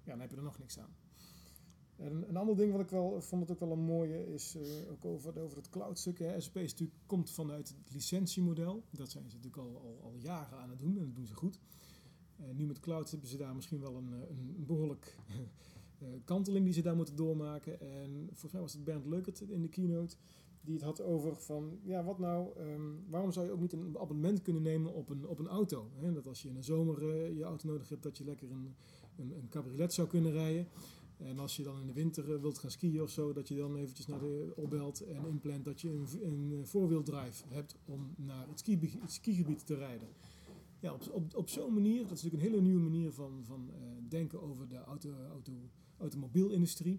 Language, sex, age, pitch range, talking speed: Dutch, male, 40-59, 145-175 Hz, 225 wpm